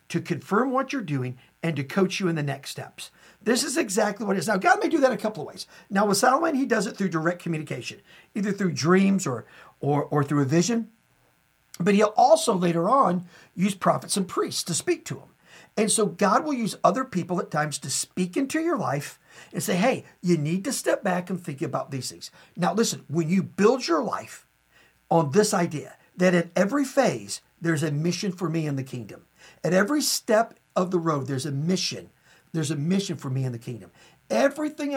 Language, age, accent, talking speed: English, 50-69, American, 215 wpm